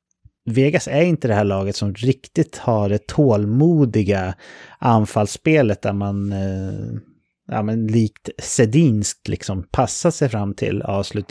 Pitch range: 105-130 Hz